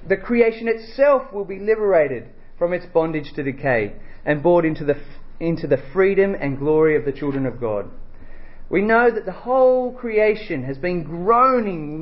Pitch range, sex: 150-210 Hz, male